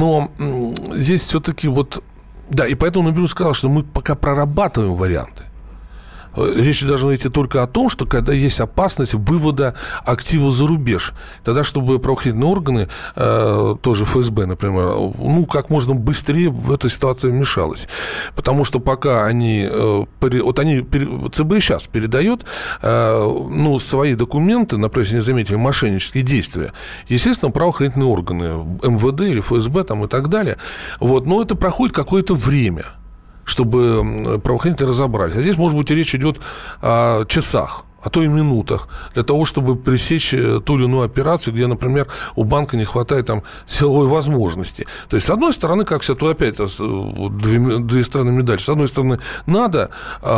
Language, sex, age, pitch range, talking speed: Russian, male, 40-59, 115-150 Hz, 150 wpm